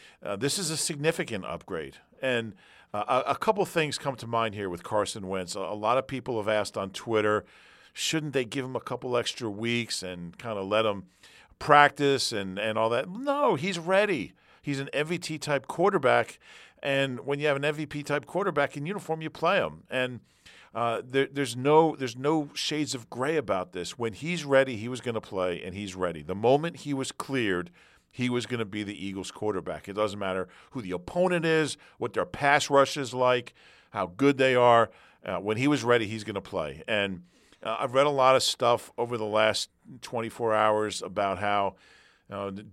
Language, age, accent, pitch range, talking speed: English, 50-69, American, 100-140 Hz, 200 wpm